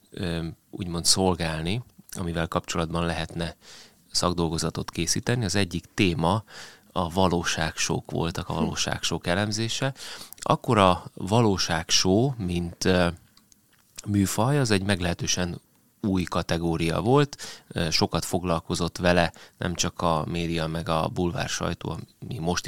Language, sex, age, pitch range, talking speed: Hungarian, male, 30-49, 85-100 Hz, 105 wpm